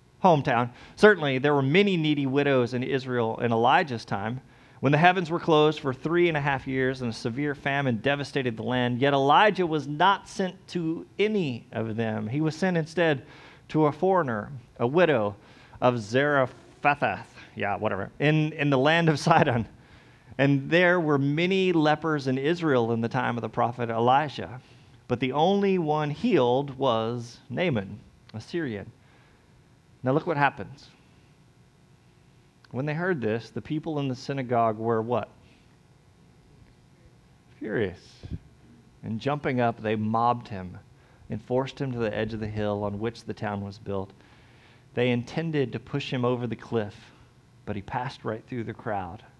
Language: English